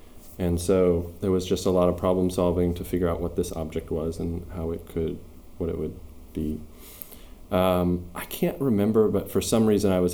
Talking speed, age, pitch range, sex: 205 wpm, 20-39, 85-95 Hz, male